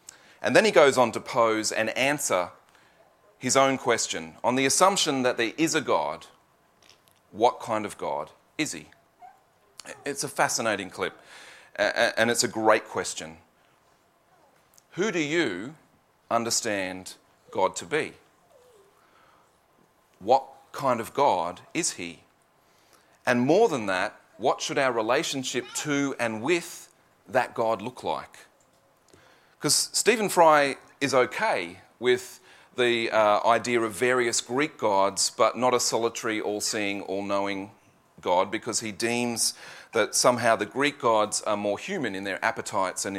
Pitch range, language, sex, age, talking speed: 100-135 Hz, English, male, 40-59, 135 wpm